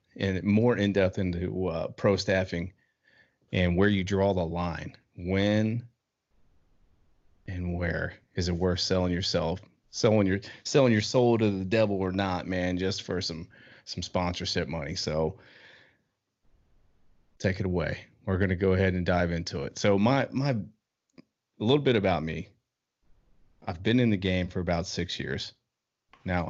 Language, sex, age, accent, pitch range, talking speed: English, male, 30-49, American, 90-105 Hz, 160 wpm